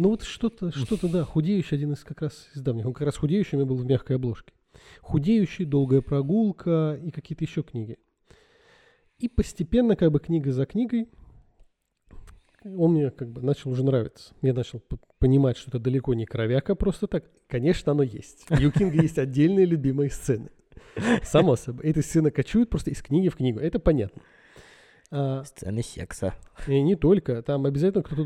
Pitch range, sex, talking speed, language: 130-170 Hz, male, 170 wpm, Russian